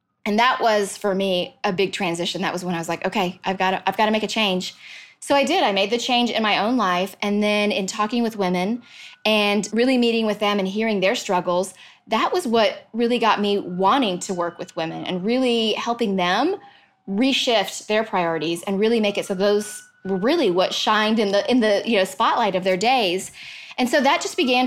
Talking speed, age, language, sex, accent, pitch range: 225 wpm, 20-39, English, female, American, 195-255 Hz